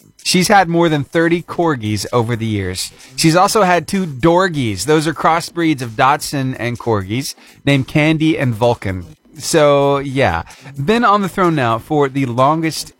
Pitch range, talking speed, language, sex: 115-170 Hz, 160 wpm, English, male